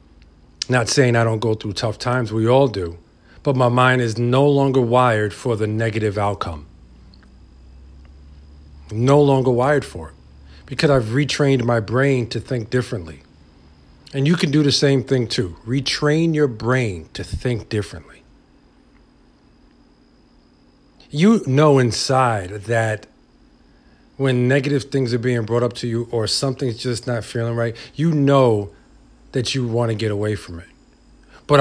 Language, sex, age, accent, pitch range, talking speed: English, male, 50-69, American, 105-130 Hz, 150 wpm